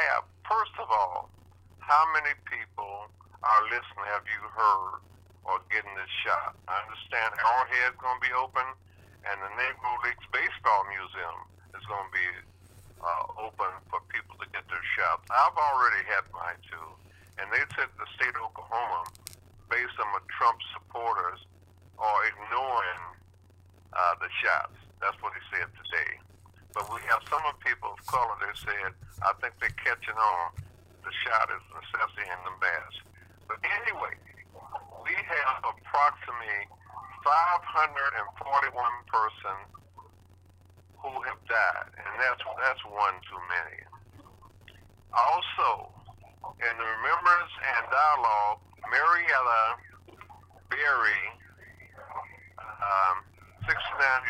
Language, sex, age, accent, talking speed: English, male, 50-69, American, 125 wpm